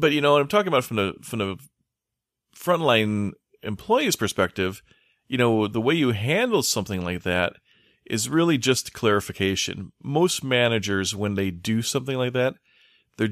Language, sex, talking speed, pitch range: English, male, 160 wpm, 95-115 Hz